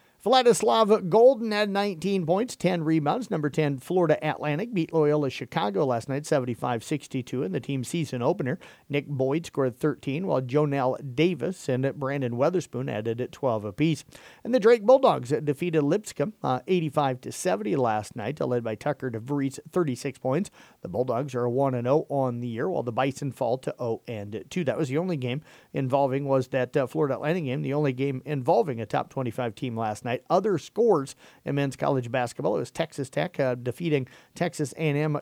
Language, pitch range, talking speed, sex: English, 130-160 Hz, 170 wpm, male